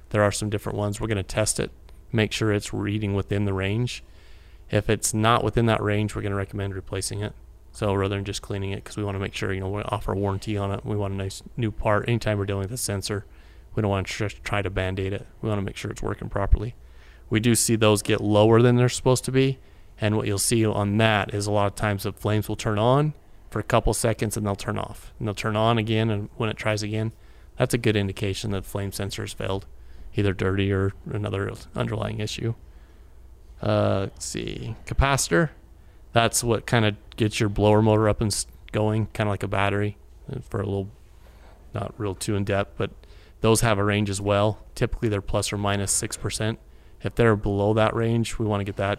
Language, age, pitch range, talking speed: English, 30-49, 100-110 Hz, 230 wpm